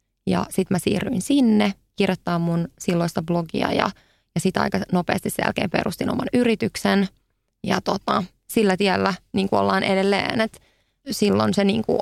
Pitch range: 175-210 Hz